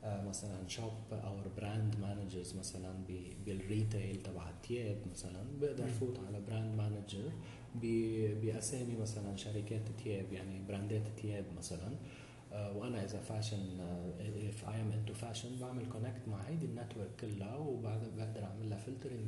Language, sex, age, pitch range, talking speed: English, male, 30-49, 105-135 Hz, 135 wpm